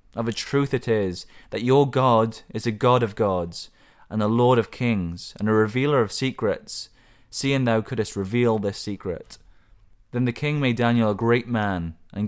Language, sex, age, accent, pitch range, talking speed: English, male, 20-39, British, 100-125 Hz, 185 wpm